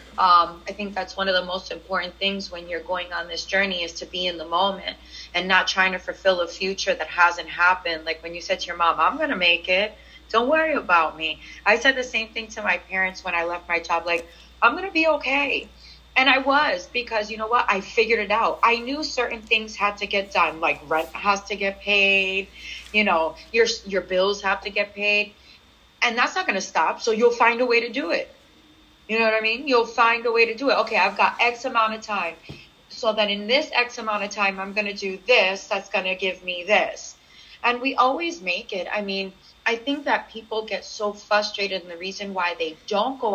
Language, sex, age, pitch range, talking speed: English, female, 30-49, 185-230 Hz, 240 wpm